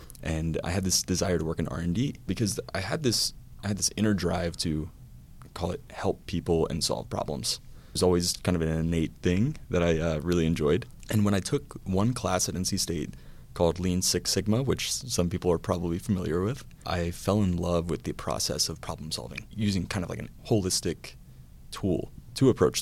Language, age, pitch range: English, 30-49, 85-100 Hz